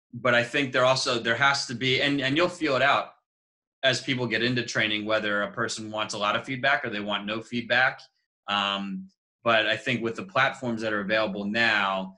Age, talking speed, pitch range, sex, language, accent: 20-39, 215 wpm, 100-120 Hz, male, English, American